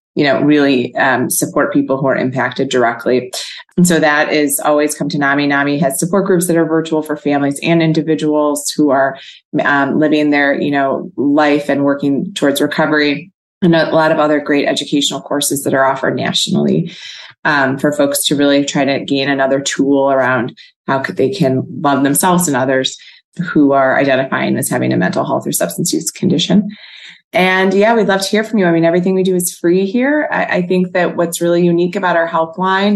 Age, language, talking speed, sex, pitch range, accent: 30-49, English, 200 wpm, female, 145-170 Hz, American